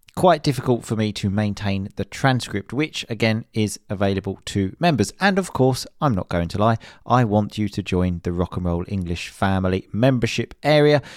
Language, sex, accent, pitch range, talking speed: English, male, British, 100-125 Hz, 190 wpm